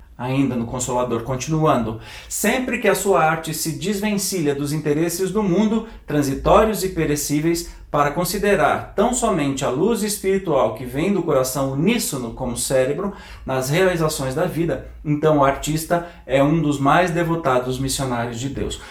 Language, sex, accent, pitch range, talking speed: Portuguese, male, Brazilian, 135-190 Hz, 150 wpm